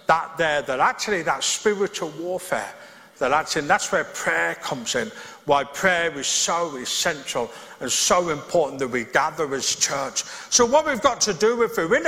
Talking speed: 175 wpm